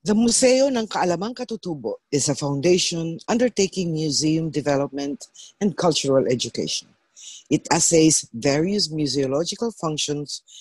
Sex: female